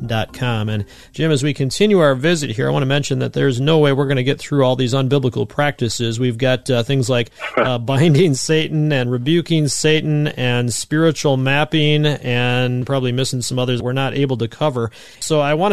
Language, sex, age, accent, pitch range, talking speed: English, male, 40-59, American, 125-155 Hz, 205 wpm